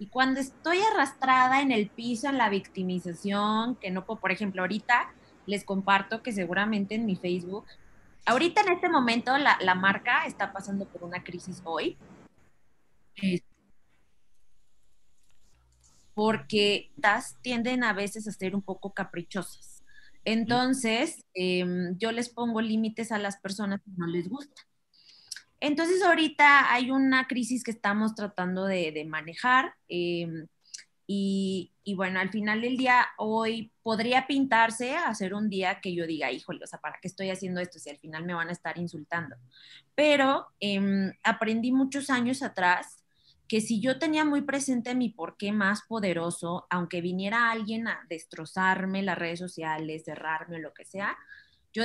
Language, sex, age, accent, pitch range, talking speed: Spanish, female, 20-39, Mexican, 180-240 Hz, 155 wpm